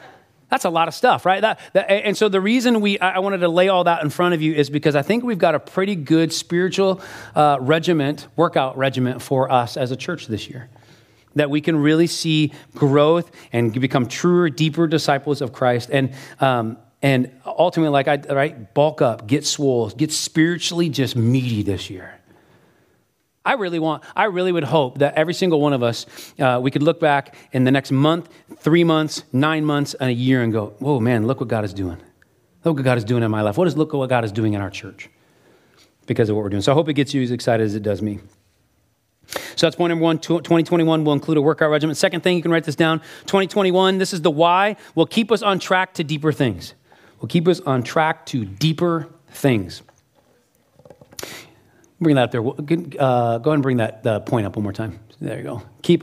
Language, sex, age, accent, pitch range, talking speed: English, male, 30-49, American, 125-165 Hz, 220 wpm